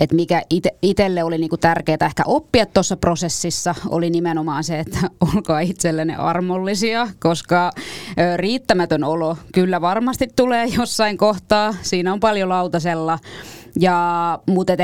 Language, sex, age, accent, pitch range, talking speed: Finnish, female, 20-39, native, 165-210 Hz, 120 wpm